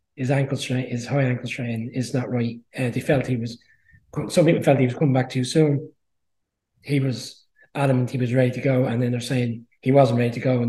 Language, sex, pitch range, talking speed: English, male, 125-145 Hz, 235 wpm